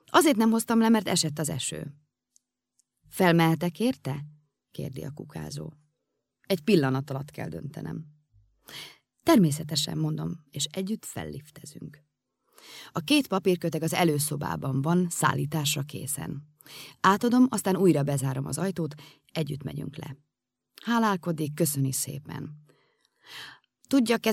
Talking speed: 110 wpm